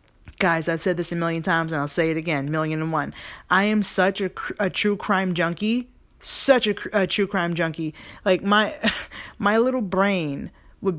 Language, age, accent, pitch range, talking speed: English, 30-49, American, 175-235 Hz, 190 wpm